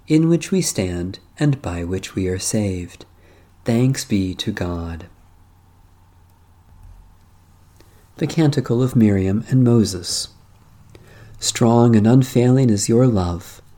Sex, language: male, English